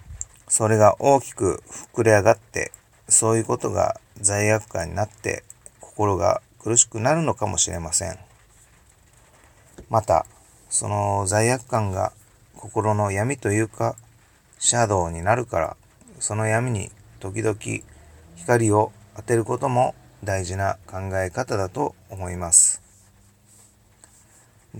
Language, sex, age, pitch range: Japanese, male, 40-59, 100-120 Hz